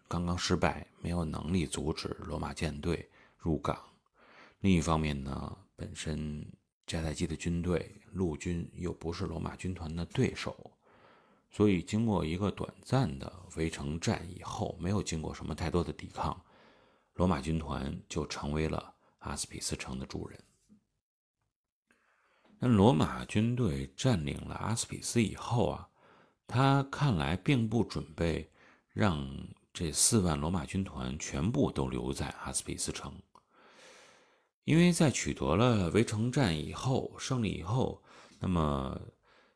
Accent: native